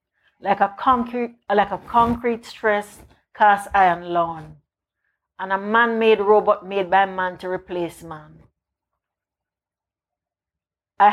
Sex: female